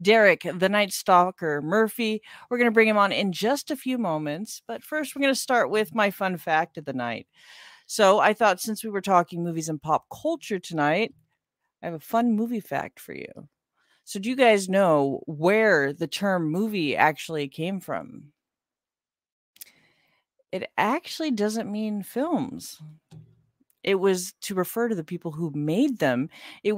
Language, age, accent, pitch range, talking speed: English, 40-59, American, 165-225 Hz, 175 wpm